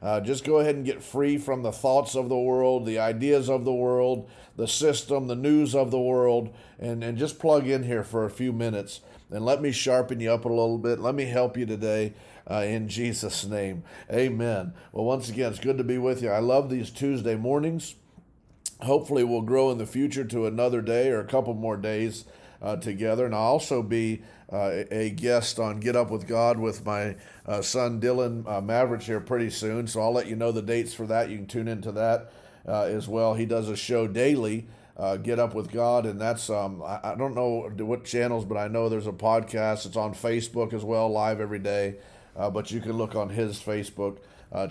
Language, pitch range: English, 105-125 Hz